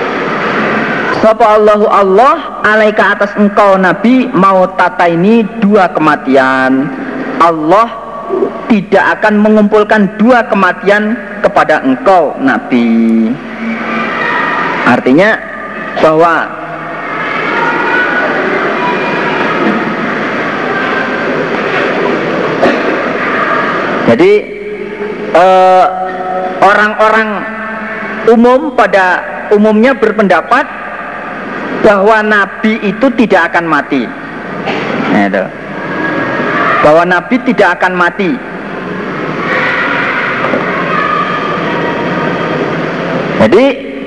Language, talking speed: Indonesian, 60 wpm